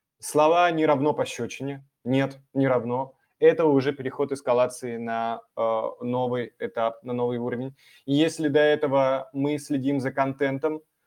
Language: Russian